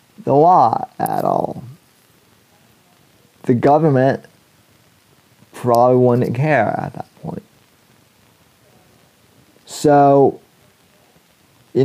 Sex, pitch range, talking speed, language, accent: male, 115-140 Hz, 70 wpm, English, American